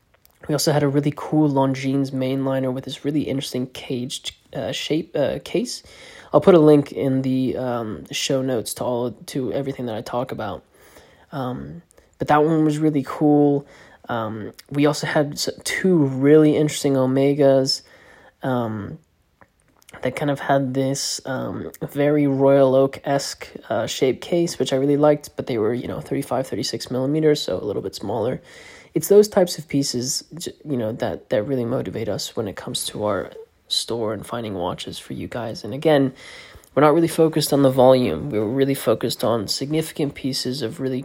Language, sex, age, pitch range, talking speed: English, male, 20-39, 130-150 Hz, 180 wpm